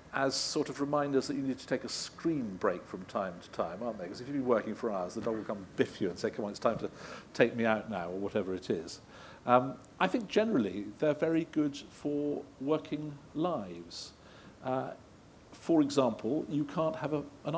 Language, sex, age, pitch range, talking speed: English, male, 50-69, 95-135 Hz, 220 wpm